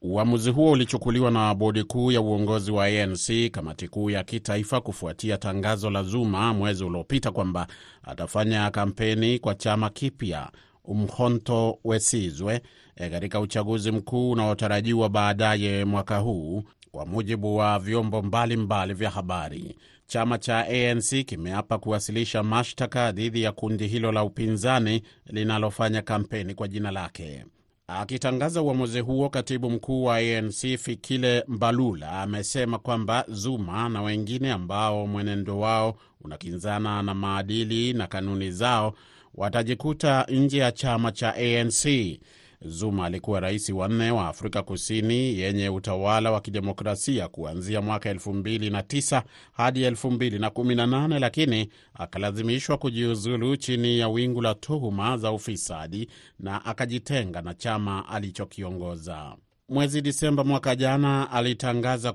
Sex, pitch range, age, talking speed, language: male, 100-120 Hz, 30-49, 125 wpm, Swahili